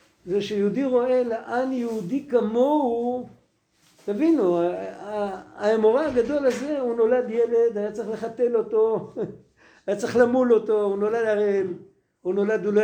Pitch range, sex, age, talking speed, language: 170-240 Hz, male, 50-69, 130 wpm, Hebrew